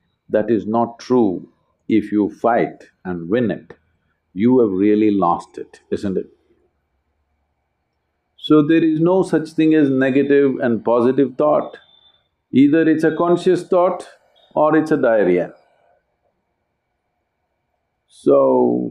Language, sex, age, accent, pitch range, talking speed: English, male, 50-69, Indian, 105-160 Hz, 120 wpm